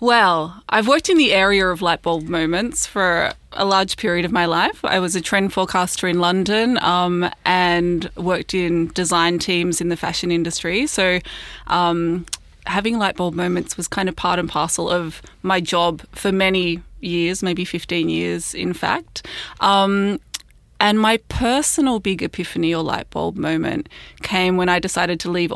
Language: English